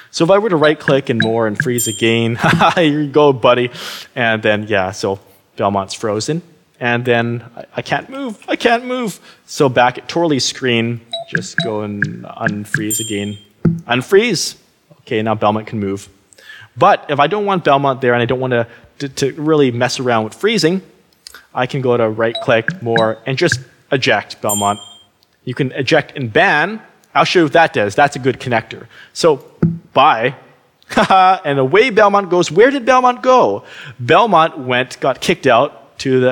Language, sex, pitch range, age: English, male, 110-155 Hz, 20-39